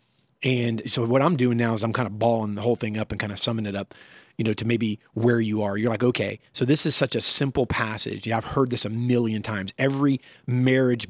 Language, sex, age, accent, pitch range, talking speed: English, male, 40-59, American, 110-135 Hz, 255 wpm